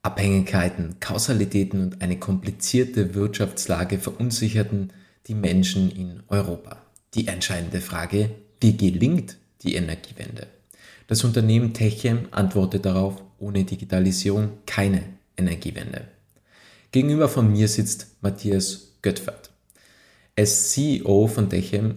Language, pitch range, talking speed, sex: German, 95-110 Hz, 105 wpm, male